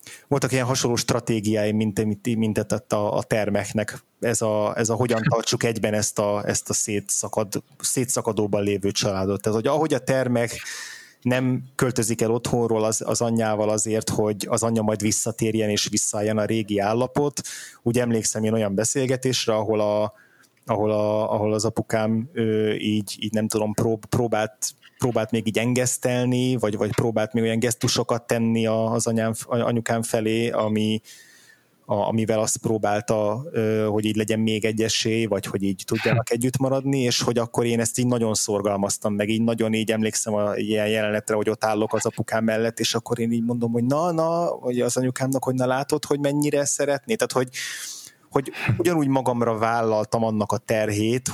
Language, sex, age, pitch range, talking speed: Hungarian, male, 20-39, 110-120 Hz, 160 wpm